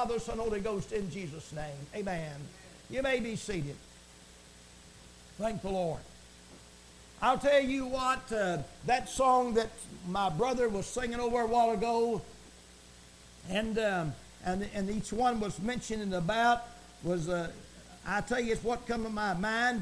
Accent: American